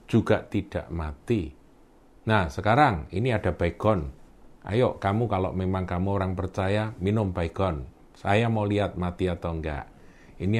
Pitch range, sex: 90-110 Hz, male